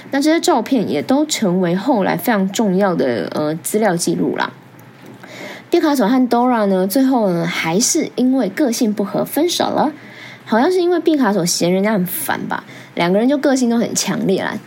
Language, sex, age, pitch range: Chinese, female, 20-39, 185-245 Hz